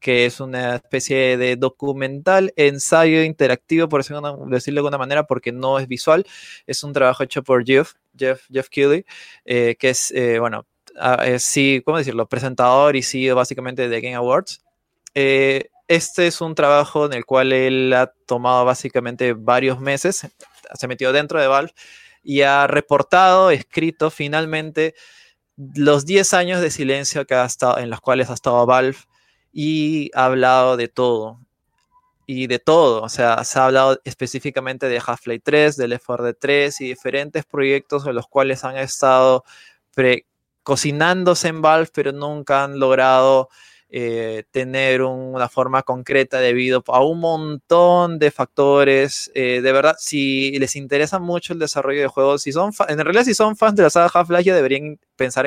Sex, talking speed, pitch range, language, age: male, 170 wpm, 130-150 Hz, Spanish, 20-39